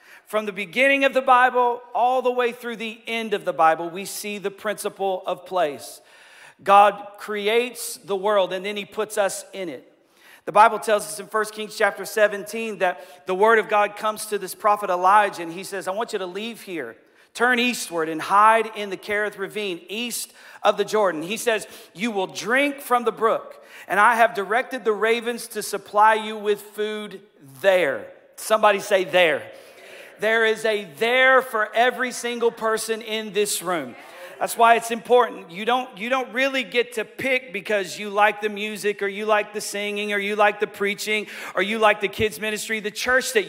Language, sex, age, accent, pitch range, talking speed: English, male, 40-59, American, 200-235 Hz, 195 wpm